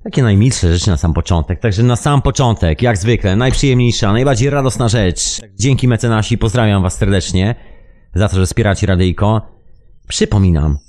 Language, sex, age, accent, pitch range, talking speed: Polish, male, 30-49, native, 95-120 Hz, 150 wpm